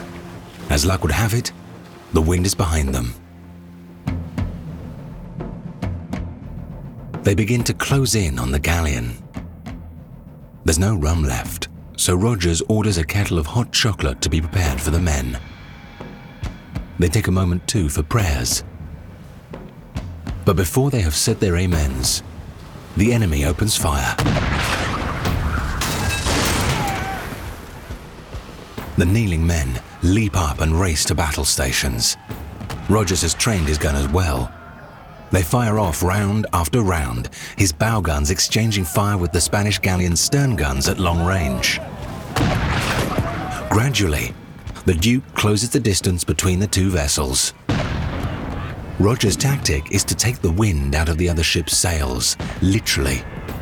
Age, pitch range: 40-59, 80-100 Hz